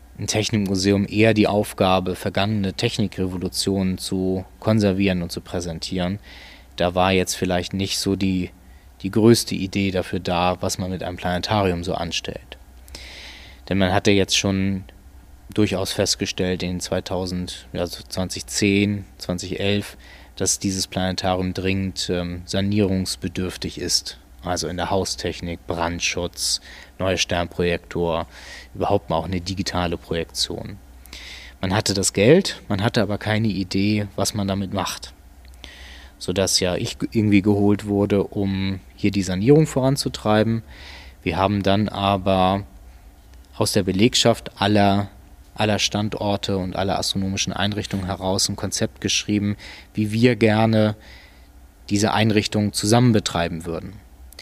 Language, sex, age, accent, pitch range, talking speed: German, male, 20-39, German, 85-100 Hz, 125 wpm